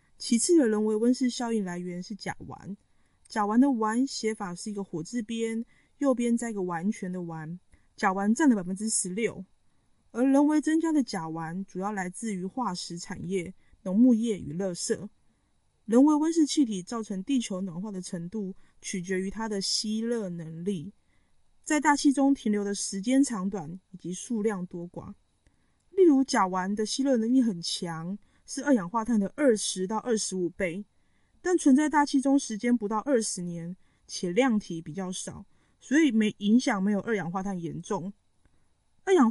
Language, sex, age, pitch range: Chinese, female, 20-39, 185-240 Hz